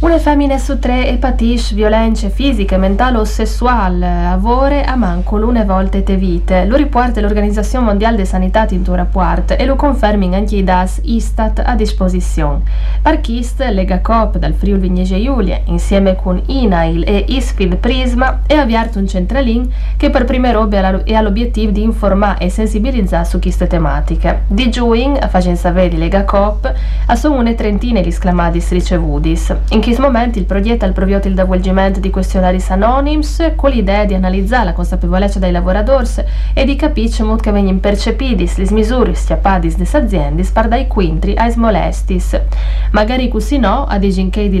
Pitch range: 185-235 Hz